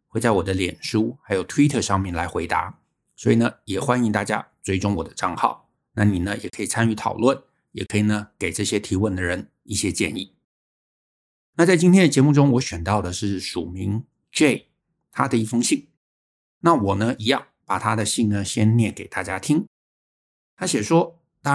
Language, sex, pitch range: Chinese, male, 100-135 Hz